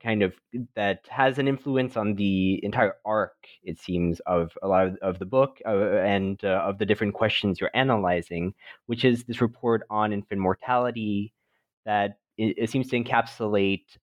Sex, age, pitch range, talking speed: male, 20-39, 95-120 Hz, 175 wpm